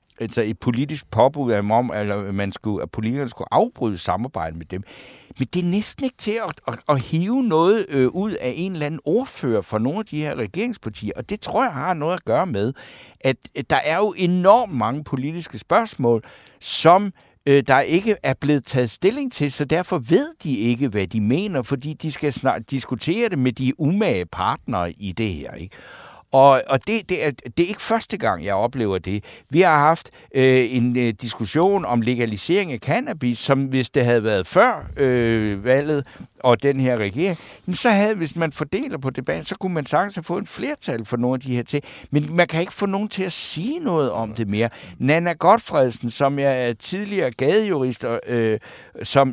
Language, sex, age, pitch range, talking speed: Danish, male, 60-79, 120-170 Hz, 190 wpm